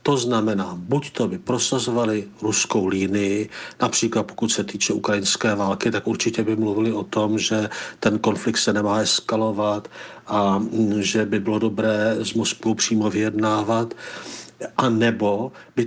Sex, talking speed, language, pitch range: male, 145 wpm, Czech, 110-135 Hz